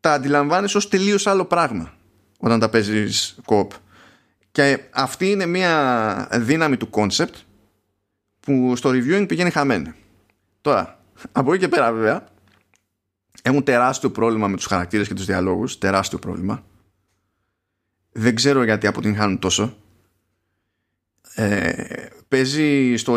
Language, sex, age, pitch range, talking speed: Greek, male, 20-39, 95-130 Hz, 120 wpm